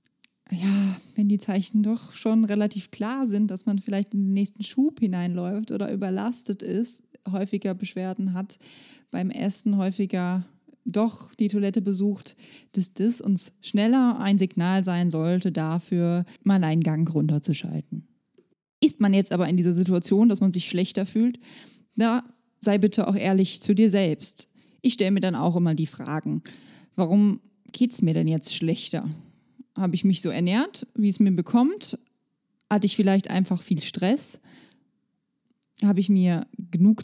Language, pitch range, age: German, 185-225 Hz, 20-39